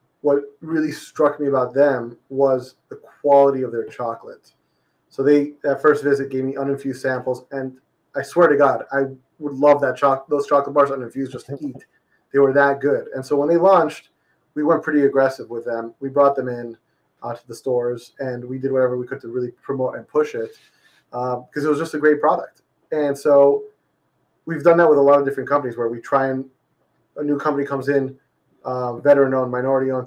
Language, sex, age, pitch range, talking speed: English, male, 30-49, 130-145 Hz, 210 wpm